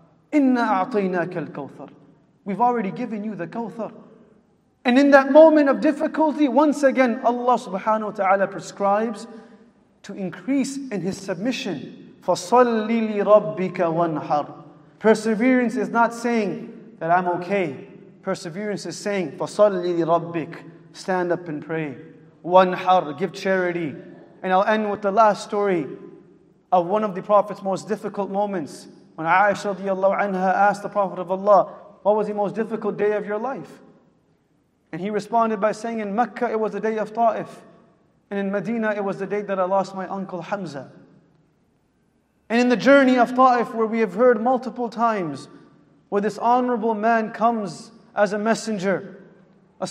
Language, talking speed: English, 150 wpm